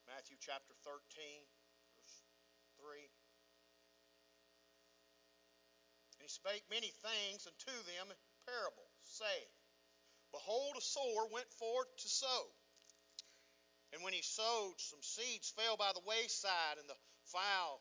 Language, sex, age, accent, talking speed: English, male, 50-69, American, 120 wpm